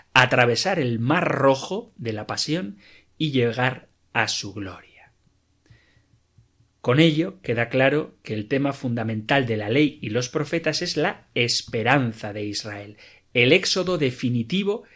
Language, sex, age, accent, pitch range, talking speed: Spanish, male, 30-49, Spanish, 115-160 Hz, 135 wpm